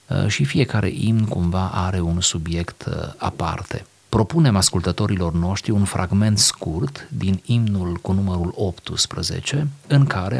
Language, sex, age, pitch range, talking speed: Romanian, male, 40-59, 90-120 Hz, 120 wpm